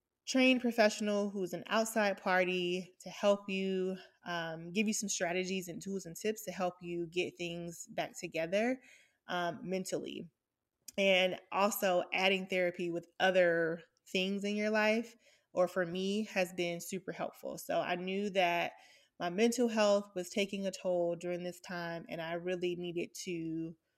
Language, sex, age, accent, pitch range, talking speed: English, female, 20-39, American, 175-210 Hz, 160 wpm